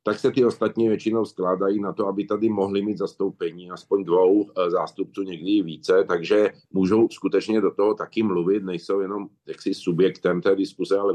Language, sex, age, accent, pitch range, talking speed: Czech, male, 50-69, native, 105-125 Hz, 170 wpm